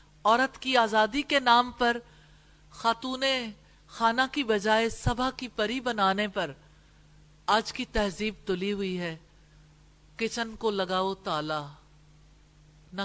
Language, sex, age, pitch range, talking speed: English, female, 50-69, 155-225 Hz, 120 wpm